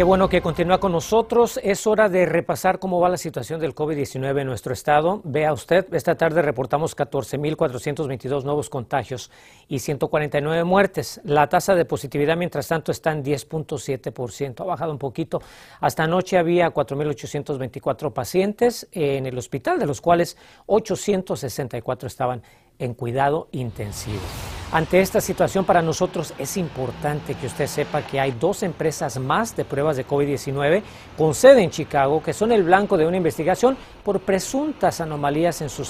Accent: Mexican